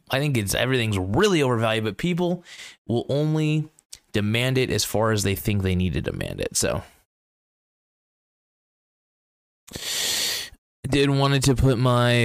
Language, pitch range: English, 95-125 Hz